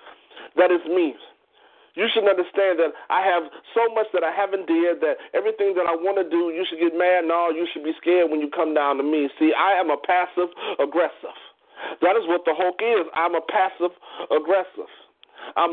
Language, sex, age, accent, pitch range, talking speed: English, male, 40-59, American, 170-240 Hz, 200 wpm